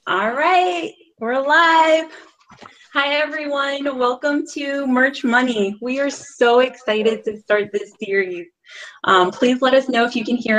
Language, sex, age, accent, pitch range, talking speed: English, female, 20-39, American, 190-250 Hz, 155 wpm